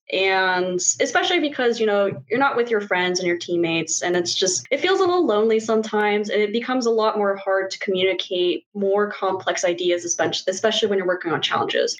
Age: 20-39